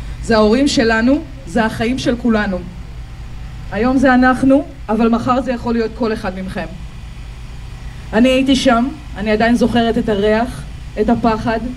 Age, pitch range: 20-39, 230-265 Hz